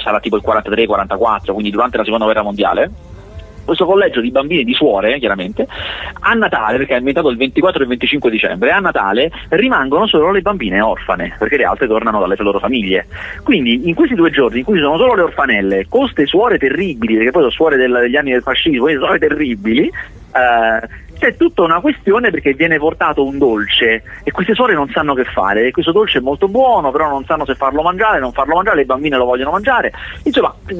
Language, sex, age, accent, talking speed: Italian, male, 30-49, native, 210 wpm